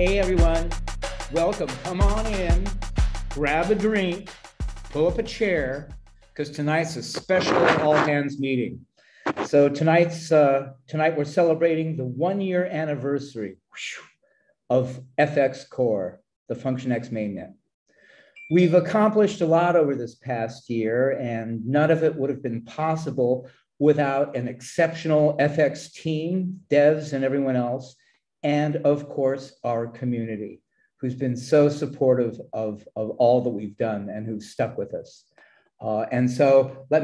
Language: English